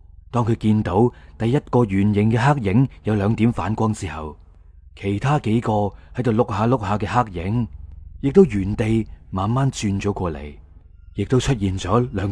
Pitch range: 90-130 Hz